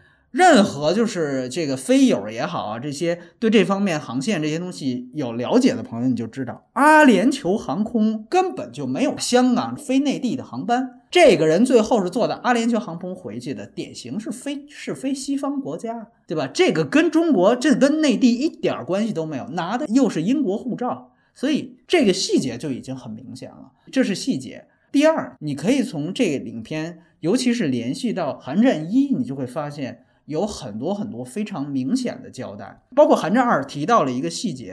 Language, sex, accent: Chinese, male, native